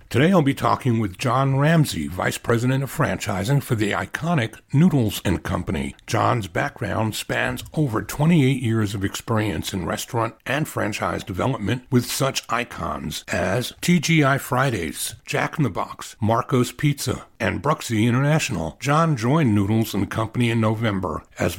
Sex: male